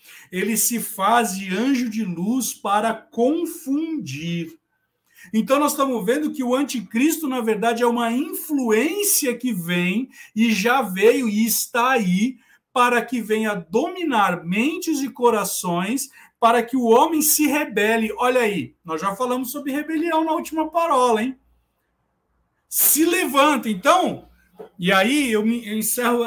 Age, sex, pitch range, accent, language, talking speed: 50-69, male, 205-270 Hz, Brazilian, Portuguese, 135 wpm